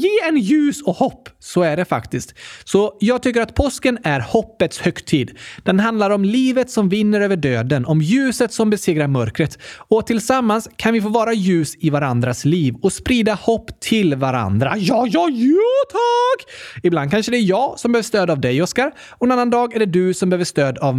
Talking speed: 200 wpm